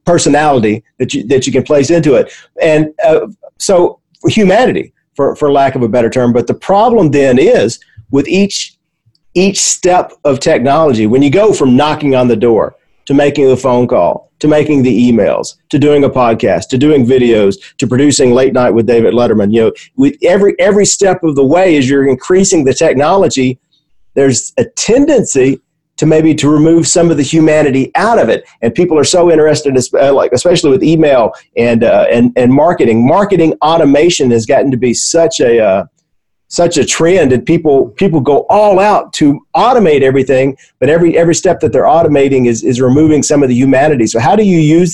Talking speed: 190 wpm